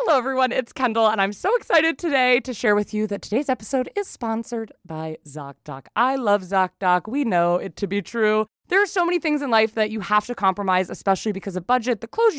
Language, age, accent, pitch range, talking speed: English, 20-39, American, 190-265 Hz, 230 wpm